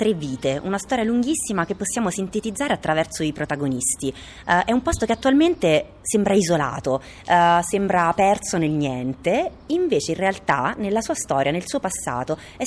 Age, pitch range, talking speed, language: 30-49, 145-230 Hz, 155 wpm, Italian